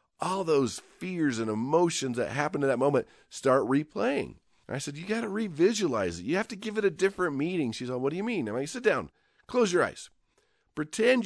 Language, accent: English, American